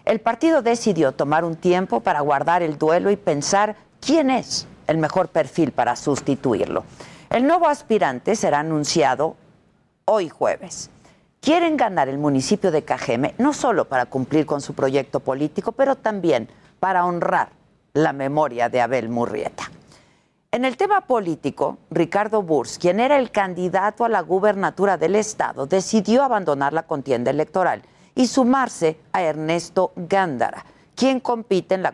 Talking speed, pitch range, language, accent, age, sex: 145 wpm, 155-220 Hz, Spanish, Mexican, 50-69, female